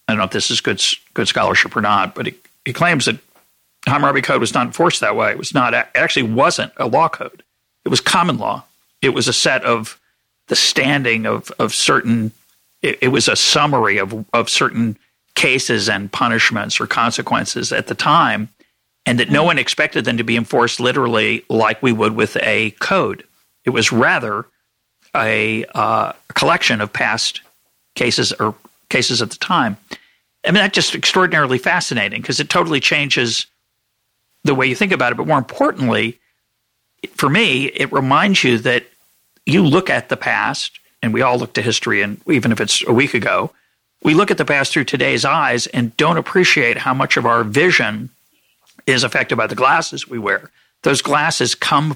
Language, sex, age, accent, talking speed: English, male, 50-69, American, 190 wpm